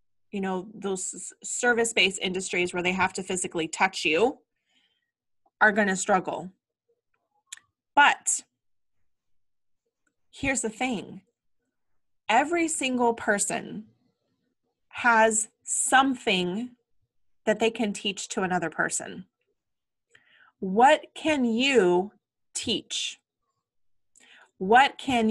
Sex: female